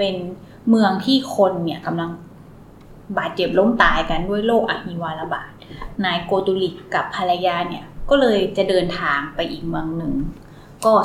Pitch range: 180-230 Hz